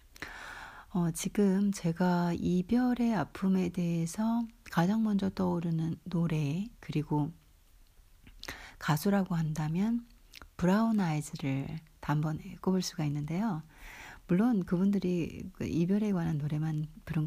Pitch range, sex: 155-195 Hz, female